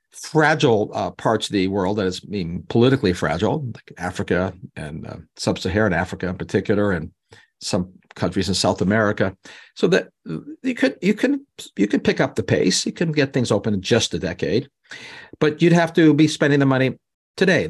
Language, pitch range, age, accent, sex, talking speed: English, 105-145 Hz, 50-69, American, male, 185 wpm